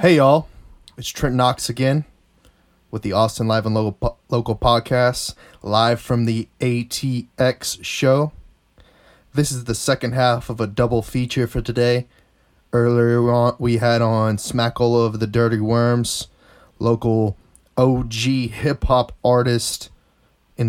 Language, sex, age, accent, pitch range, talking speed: English, male, 20-39, American, 110-125 Hz, 130 wpm